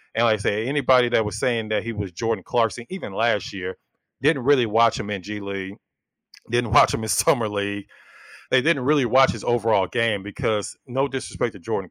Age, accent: 30-49, American